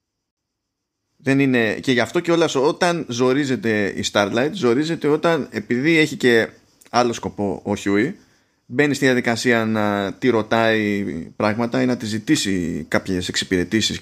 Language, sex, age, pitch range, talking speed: Greek, male, 20-39, 105-155 Hz, 140 wpm